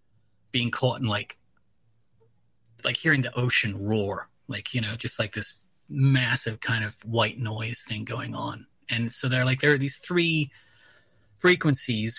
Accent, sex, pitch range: American, male, 110-130 Hz